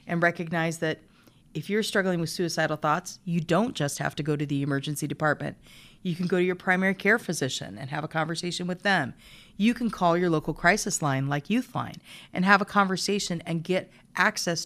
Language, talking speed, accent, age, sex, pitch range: English, 200 wpm, American, 40-59, female, 155-195 Hz